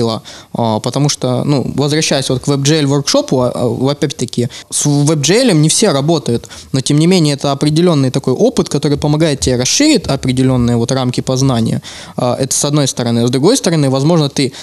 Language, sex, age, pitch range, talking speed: Russian, male, 20-39, 130-160 Hz, 155 wpm